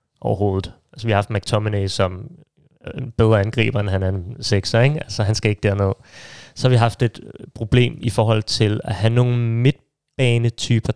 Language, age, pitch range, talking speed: Danish, 30-49, 110-130 Hz, 185 wpm